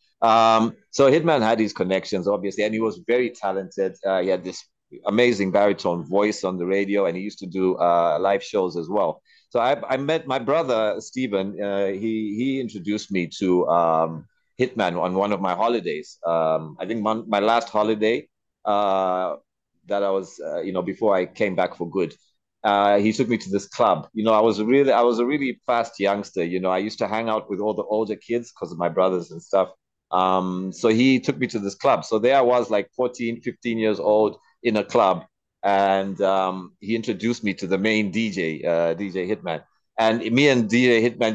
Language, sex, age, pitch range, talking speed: English, male, 30-49, 95-115 Hz, 210 wpm